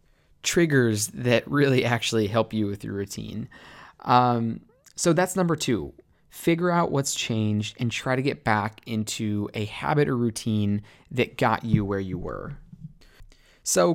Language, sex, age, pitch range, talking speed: English, male, 20-39, 105-130 Hz, 150 wpm